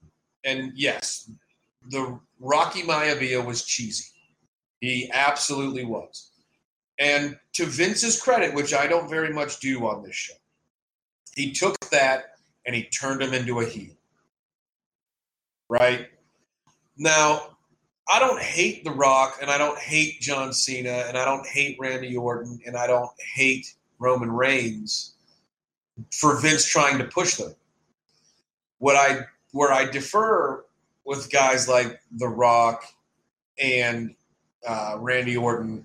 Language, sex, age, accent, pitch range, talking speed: English, male, 40-59, American, 120-140 Hz, 130 wpm